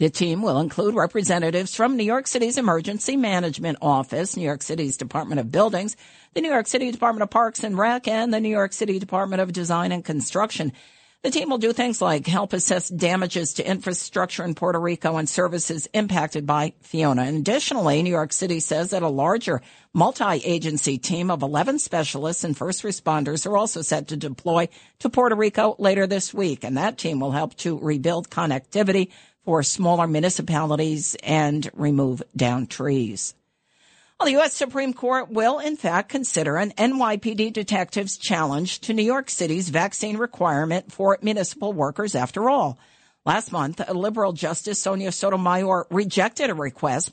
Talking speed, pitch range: 170 wpm, 155-215 Hz